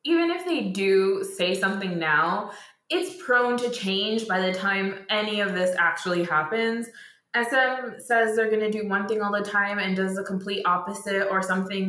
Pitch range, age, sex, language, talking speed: 175-215 Hz, 20-39, female, English, 185 wpm